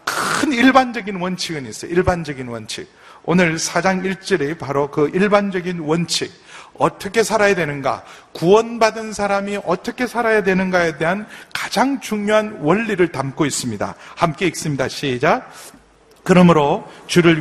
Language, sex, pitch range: Korean, male, 140-180 Hz